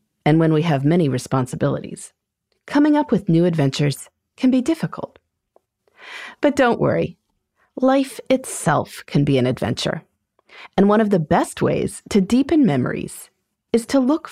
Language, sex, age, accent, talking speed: English, female, 30-49, American, 145 wpm